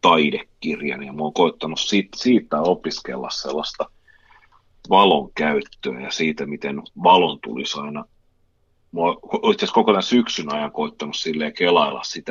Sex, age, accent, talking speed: male, 30-49, native, 115 wpm